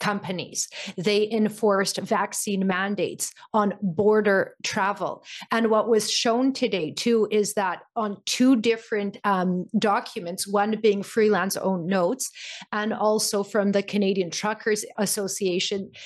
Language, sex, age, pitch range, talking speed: English, female, 30-49, 200-250 Hz, 125 wpm